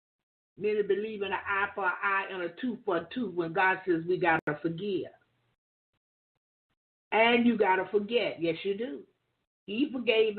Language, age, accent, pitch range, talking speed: English, 50-69, American, 195-245 Hz, 180 wpm